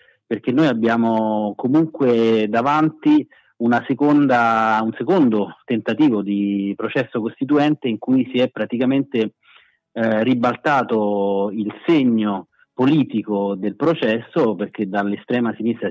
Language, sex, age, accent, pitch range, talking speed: Italian, male, 30-49, native, 100-125 Hz, 105 wpm